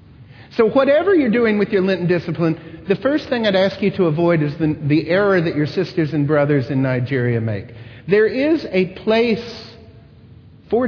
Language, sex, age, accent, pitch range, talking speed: English, male, 50-69, American, 120-185 Hz, 180 wpm